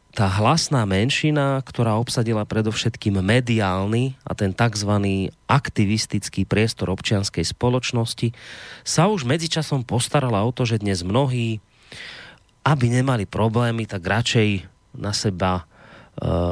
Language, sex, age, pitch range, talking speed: Slovak, male, 30-49, 100-130 Hz, 115 wpm